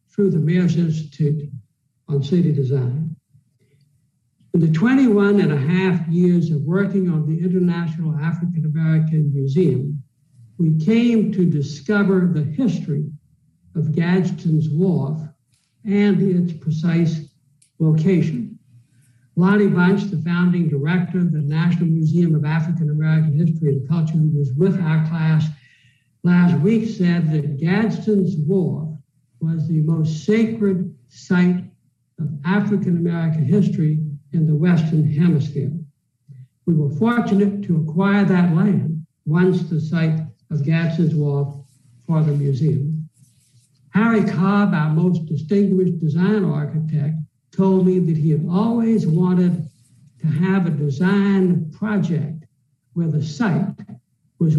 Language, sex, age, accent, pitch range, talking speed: English, male, 60-79, American, 150-180 Hz, 120 wpm